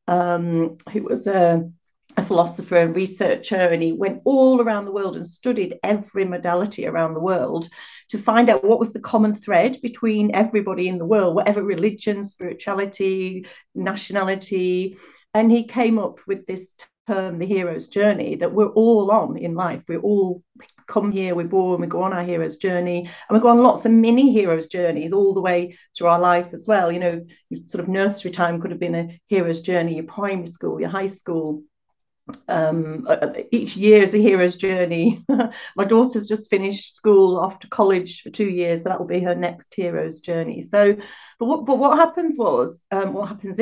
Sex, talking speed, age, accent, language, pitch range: female, 185 wpm, 40-59, British, English, 175-210 Hz